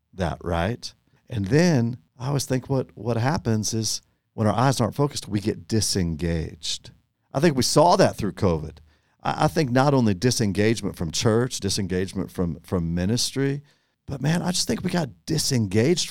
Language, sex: English, male